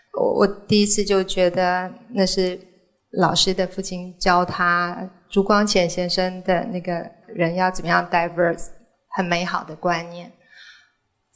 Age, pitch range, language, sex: 20-39, 175-200 Hz, Chinese, female